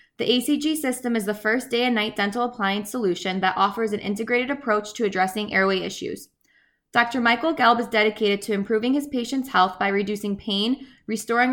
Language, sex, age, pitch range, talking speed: English, female, 20-39, 200-245 Hz, 180 wpm